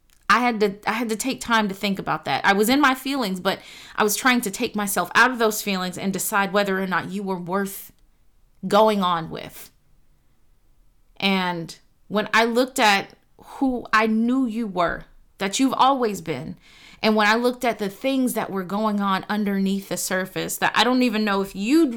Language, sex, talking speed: English, female, 200 wpm